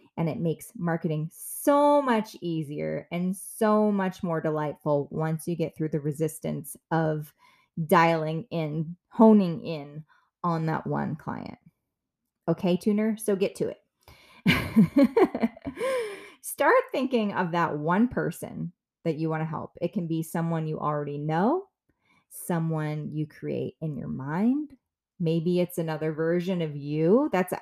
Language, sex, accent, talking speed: English, female, American, 140 wpm